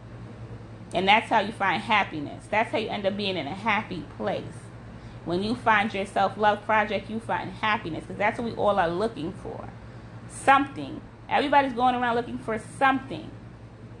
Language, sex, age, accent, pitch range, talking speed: English, female, 30-49, American, 180-235 Hz, 170 wpm